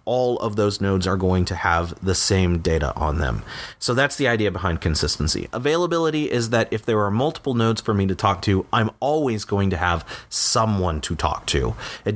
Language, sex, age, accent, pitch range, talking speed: English, male, 30-49, American, 95-125 Hz, 205 wpm